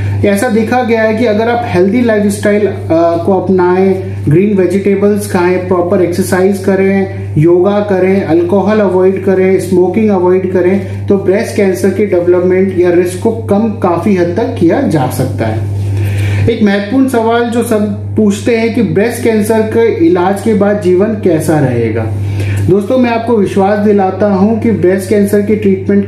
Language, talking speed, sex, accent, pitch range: Hindi, 160 wpm, male, native, 170-210 Hz